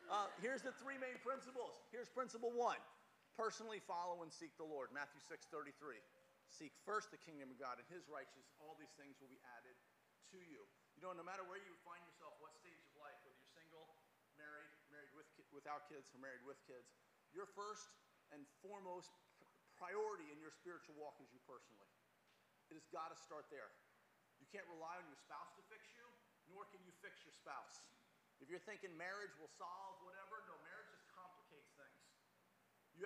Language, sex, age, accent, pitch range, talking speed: English, male, 40-59, American, 150-200 Hz, 190 wpm